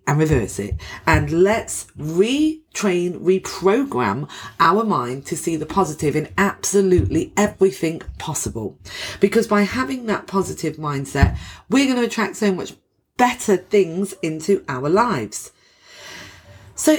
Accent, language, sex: British, English, female